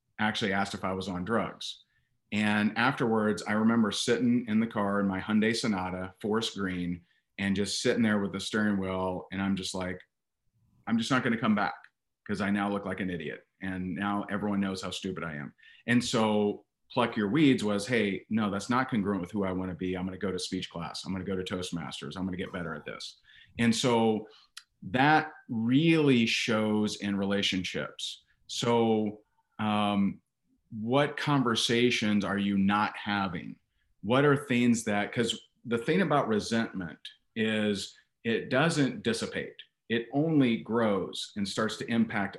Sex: male